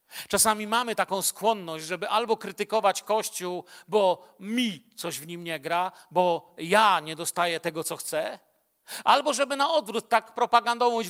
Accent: native